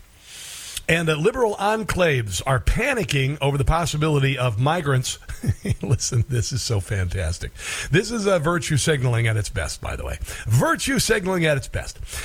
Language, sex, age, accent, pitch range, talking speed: English, male, 50-69, American, 125-170 Hz, 155 wpm